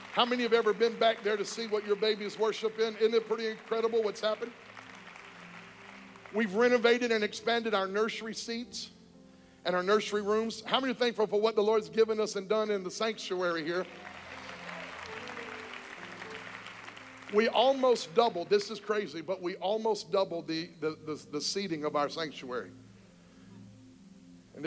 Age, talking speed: 50-69, 160 wpm